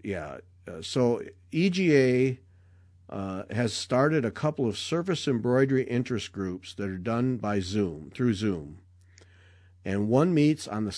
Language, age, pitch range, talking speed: English, 50-69, 95-125 Hz, 135 wpm